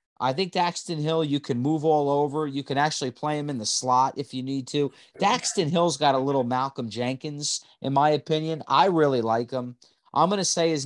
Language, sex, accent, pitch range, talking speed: English, male, American, 115-155 Hz, 220 wpm